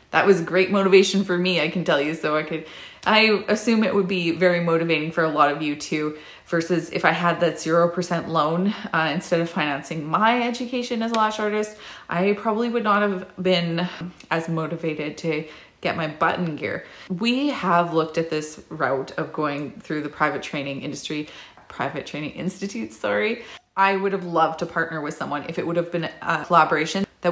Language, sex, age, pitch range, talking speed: English, female, 20-39, 160-195 Hz, 195 wpm